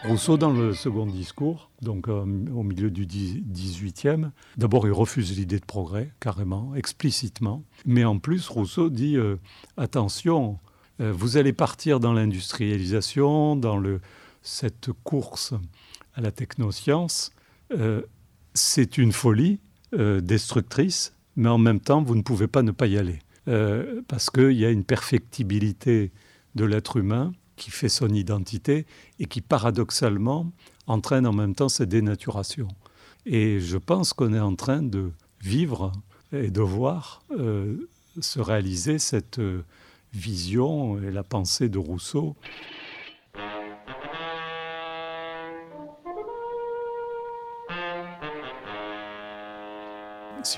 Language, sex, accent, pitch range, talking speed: French, male, French, 105-140 Hz, 125 wpm